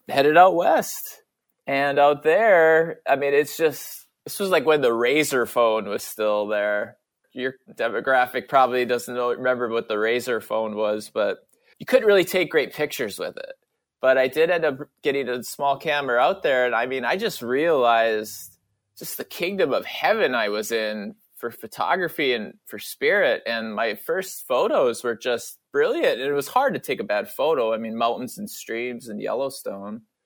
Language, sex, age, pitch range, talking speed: English, male, 20-39, 115-160 Hz, 180 wpm